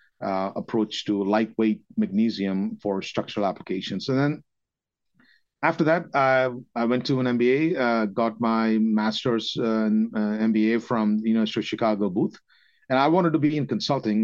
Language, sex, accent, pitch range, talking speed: English, male, Indian, 105-125 Hz, 160 wpm